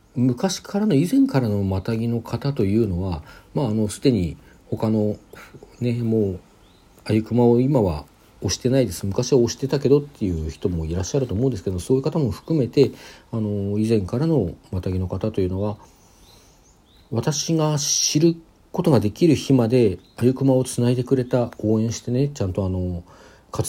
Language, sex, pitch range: Japanese, male, 95-130 Hz